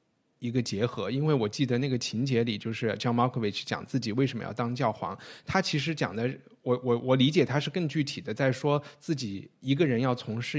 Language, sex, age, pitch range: Chinese, male, 20-39, 115-140 Hz